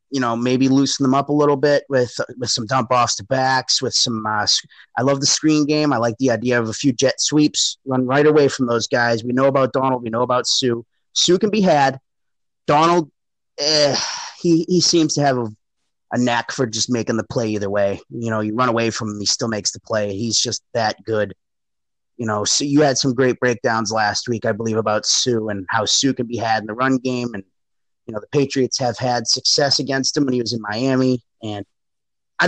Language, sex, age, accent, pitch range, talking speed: English, male, 30-49, American, 115-145 Hz, 230 wpm